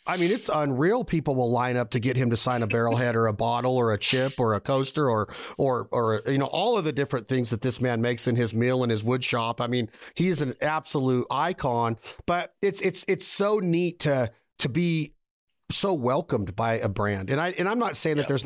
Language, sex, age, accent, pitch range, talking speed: English, male, 40-59, American, 120-160 Hz, 240 wpm